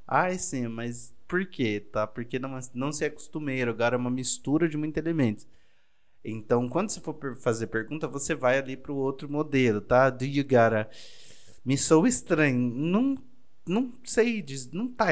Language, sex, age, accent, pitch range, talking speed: Portuguese, male, 20-39, Brazilian, 110-145 Hz, 185 wpm